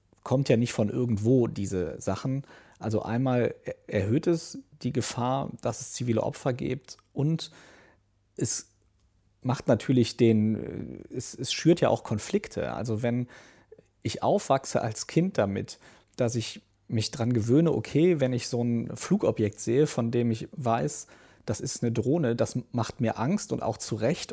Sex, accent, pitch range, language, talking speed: male, German, 110-135 Hz, German, 160 wpm